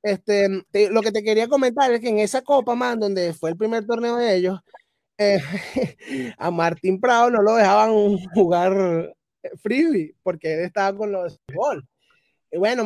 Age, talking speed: 20-39, 175 wpm